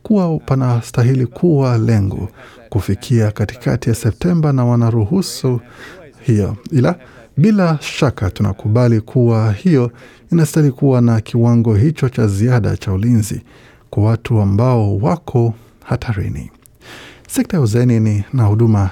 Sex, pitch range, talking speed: male, 110-130 Hz, 115 wpm